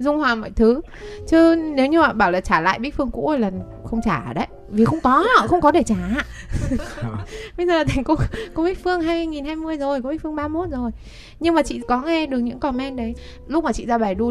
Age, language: 20-39, Vietnamese